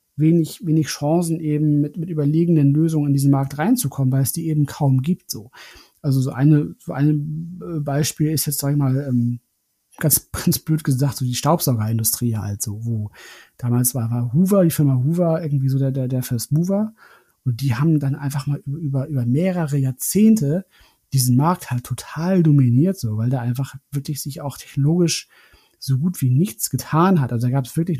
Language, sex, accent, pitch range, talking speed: German, male, German, 130-155 Hz, 190 wpm